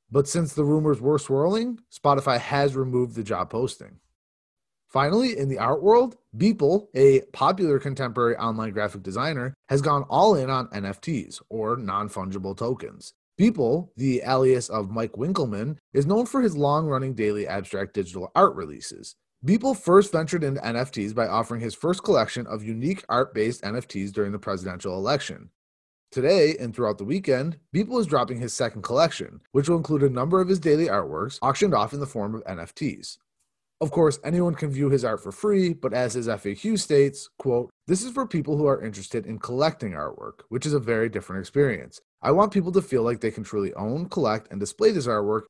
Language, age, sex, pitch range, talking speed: English, 30-49, male, 110-160 Hz, 185 wpm